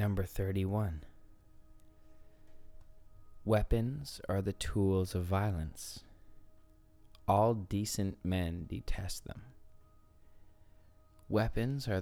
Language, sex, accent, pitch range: English, male, American, 85-105 Hz